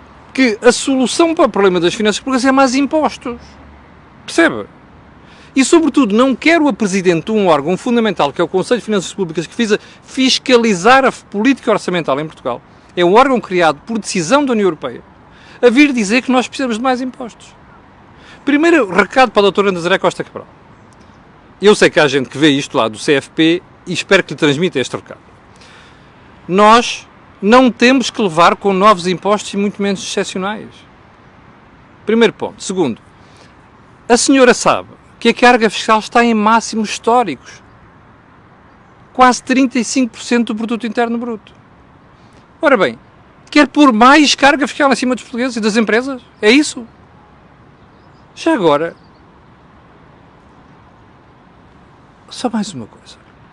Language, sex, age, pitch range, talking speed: Portuguese, male, 40-59, 185-255 Hz, 150 wpm